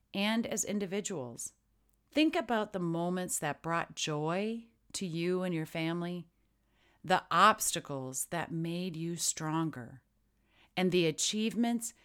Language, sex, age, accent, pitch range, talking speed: English, female, 40-59, American, 145-195 Hz, 120 wpm